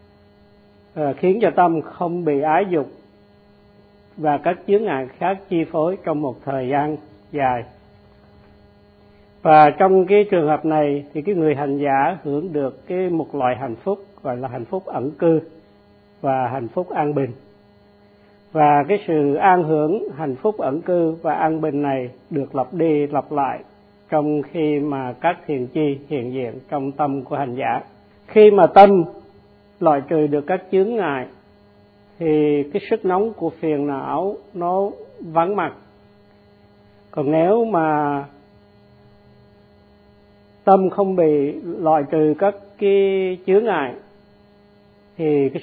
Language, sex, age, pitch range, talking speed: Vietnamese, male, 50-69, 100-170 Hz, 145 wpm